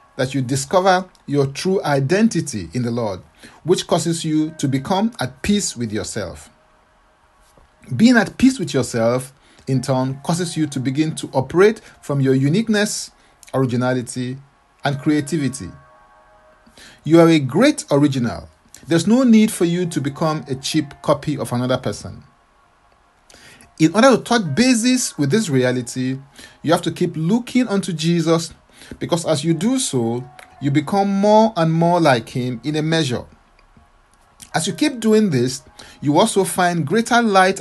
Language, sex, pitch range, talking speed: English, male, 125-180 Hz, 150 wpm